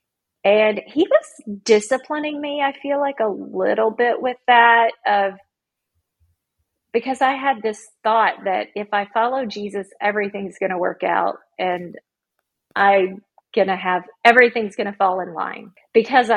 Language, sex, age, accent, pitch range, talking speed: English, female, 40-59, American, 195-255 Hz, 150 wpm